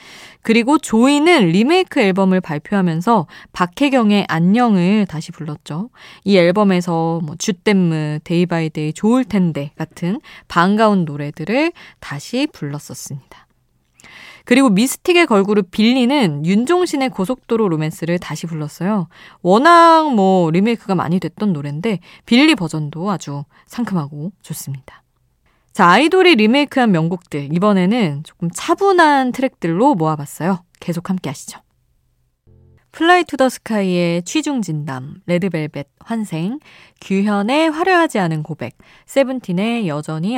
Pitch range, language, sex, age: 155-235 Hz, Korean, female, 20-39